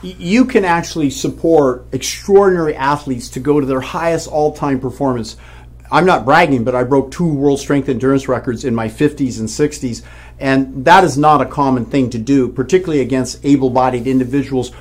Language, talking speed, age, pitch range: English, 170 wpm, 50-69, 130-165 Hz